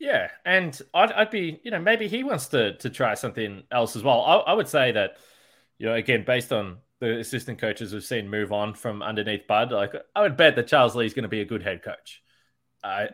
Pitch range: 110-145 Hz